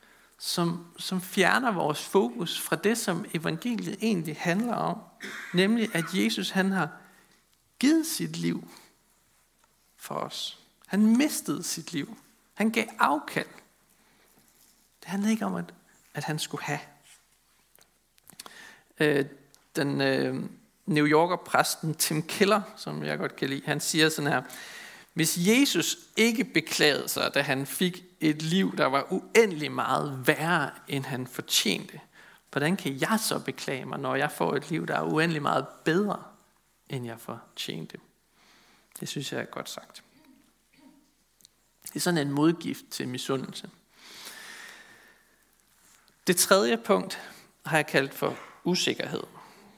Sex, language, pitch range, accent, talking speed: male, Danish, 145-210 Hz, native, 135 wpm